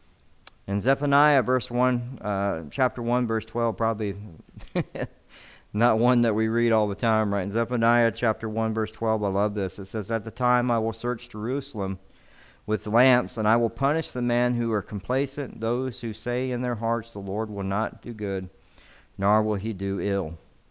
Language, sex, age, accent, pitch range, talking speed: English, male, 50-69, American, 100-130 Hz, 190 wpm